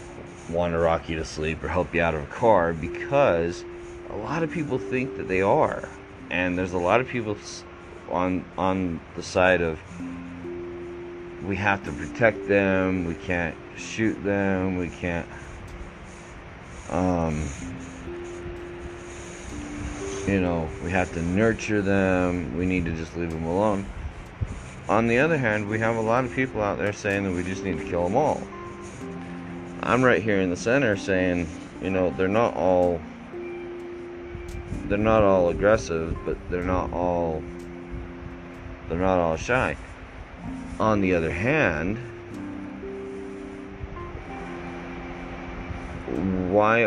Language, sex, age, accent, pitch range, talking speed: English, male, 30-49, American, 85-95 Hz, 140 wpm